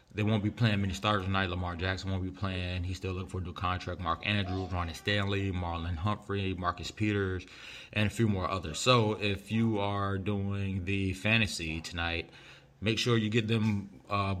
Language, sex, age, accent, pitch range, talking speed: English, male, 20-39, American, 85-100 Hz, 190 wpm